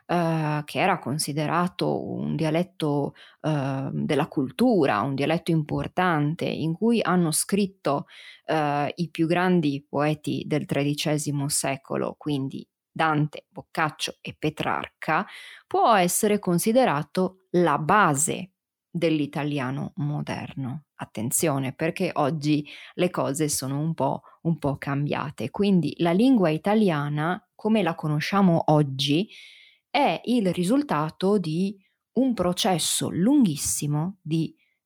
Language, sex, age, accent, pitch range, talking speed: Italian, female, 20-39, native, 150-185 Hz, 100 wpm